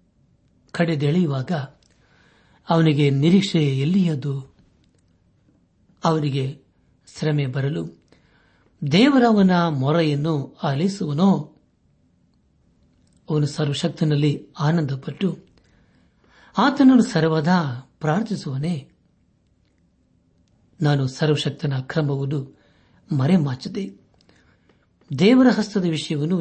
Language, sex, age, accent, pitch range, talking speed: Kannada, male, 60-79, native, 140-175 Hz, 50 wpm